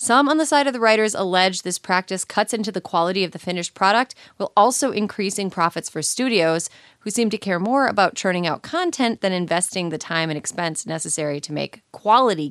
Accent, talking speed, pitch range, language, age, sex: American, 205 wpm, 170-220 Hz, English, 30-49, female